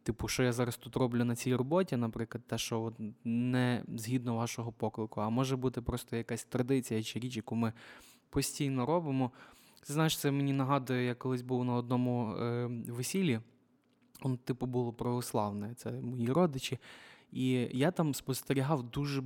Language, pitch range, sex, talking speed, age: Ukrainian, 120-145 Hz, male, 160 wpm, 20-39